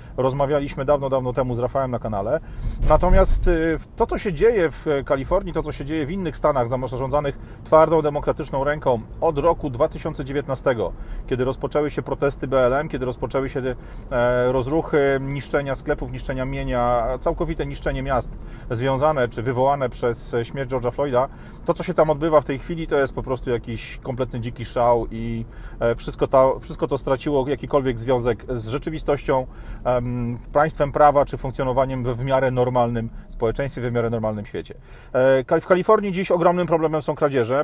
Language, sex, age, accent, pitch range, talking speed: Polish, male, 40-59, native, 125-155 Hz, 155 wpm